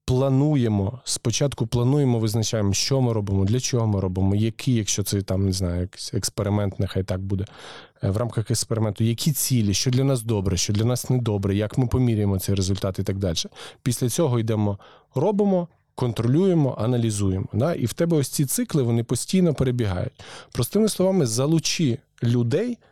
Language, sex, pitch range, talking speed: Ukrainian, male, 105-130 Hz, 160 wpm